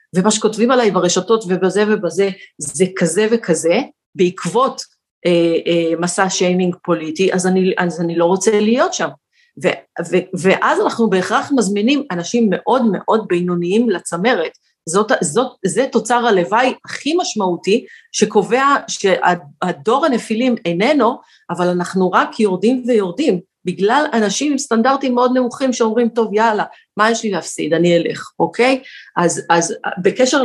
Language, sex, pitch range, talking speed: Hebrew, female, 175-235 Hz, 135 wpm